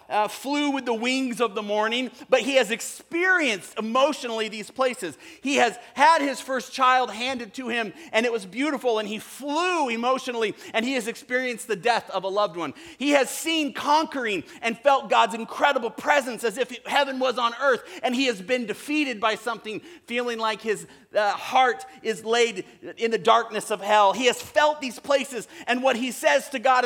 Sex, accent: male, American